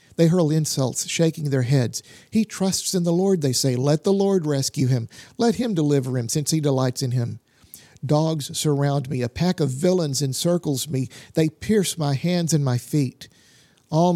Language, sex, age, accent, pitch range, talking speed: English, male, 50-69, American, 140-180 Hz, 185 wpm